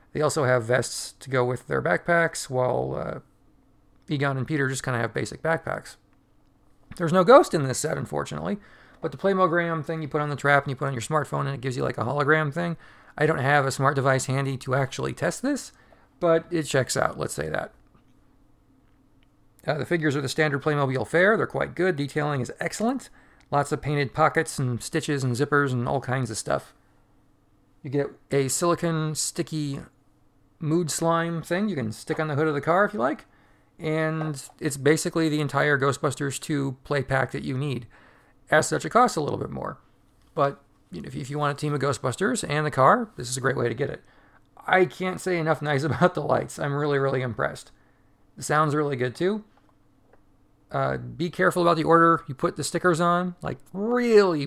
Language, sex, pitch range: English, male, 135-165 Hz